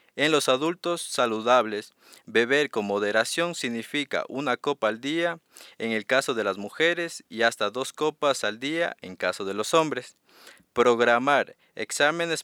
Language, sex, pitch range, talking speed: Hungarian, male, 110-150 Hz, 150 wpm